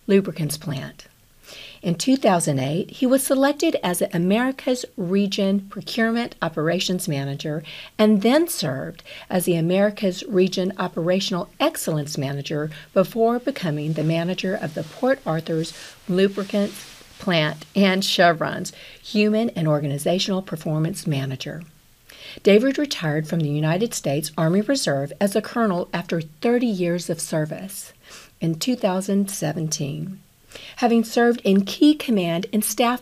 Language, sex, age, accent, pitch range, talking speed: English, female, 50-69, American, 155-210 Hz, 120 wpm